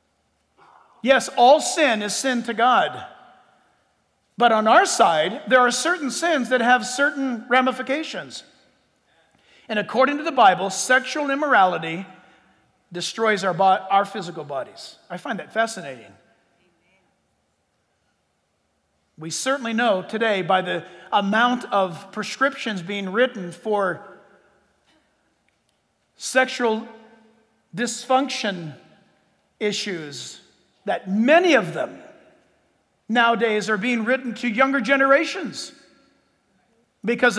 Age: 50-69